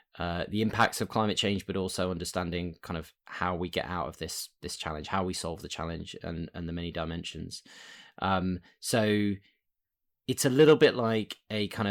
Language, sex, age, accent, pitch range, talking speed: English, male, 10-29, British, 95-110 Hz, 190 wpm